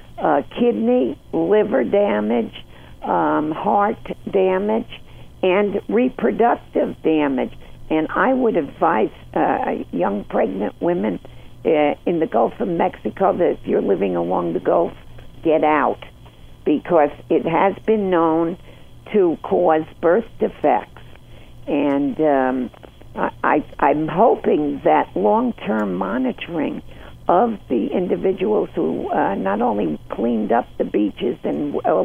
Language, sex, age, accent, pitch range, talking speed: English, female, 60-79, American, 140-210 Hz, 115 wpm